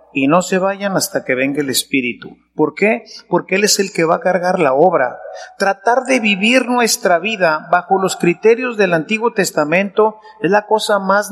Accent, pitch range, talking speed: Mexican, 175-225 Hz, 190 wpm